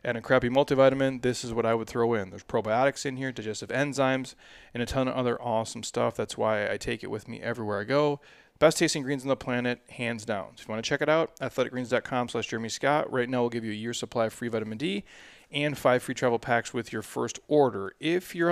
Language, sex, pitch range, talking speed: English, male, 115-135 Hz, 245 wpm